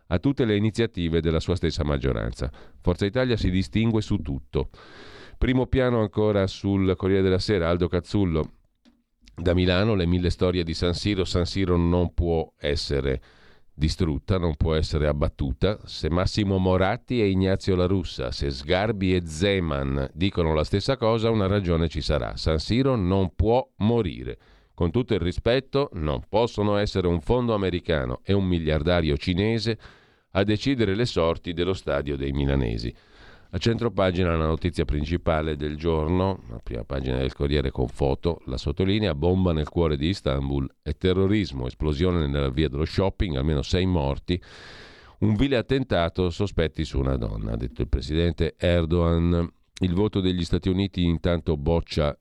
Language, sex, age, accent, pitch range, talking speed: Italian, male, 50-69, native, 75-100 Hz, 155 wpm